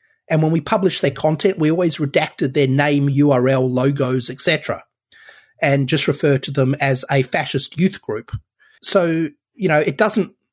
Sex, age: male, 30-49